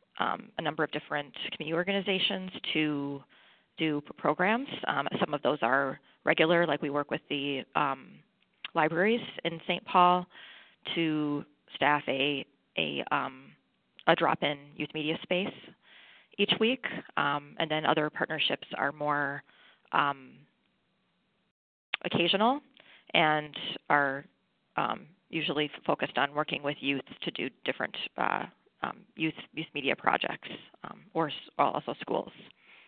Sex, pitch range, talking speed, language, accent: female, 145-180 Hz, 130 wpm, English, American